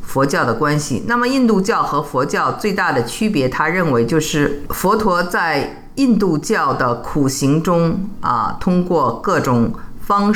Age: 50-69